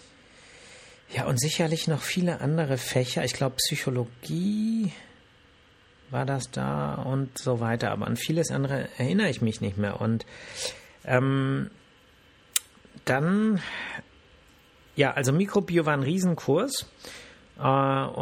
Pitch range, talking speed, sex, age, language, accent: 120-150 Hz, 115 wpm, male, 50-69, German, German